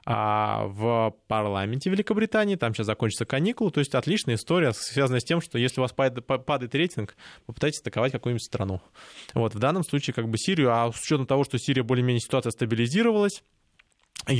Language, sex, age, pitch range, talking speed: Russian, male, 20-39, 115-145 Hz, 170 wpm